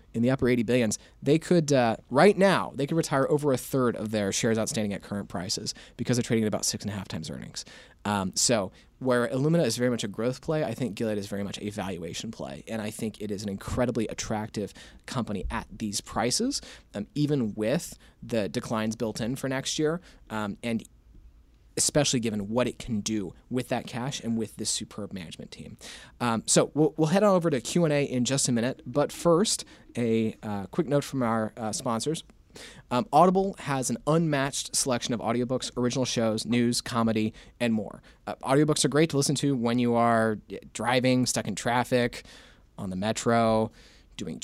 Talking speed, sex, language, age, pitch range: 200 wpm, male, English, 30-49, 110-135 Hz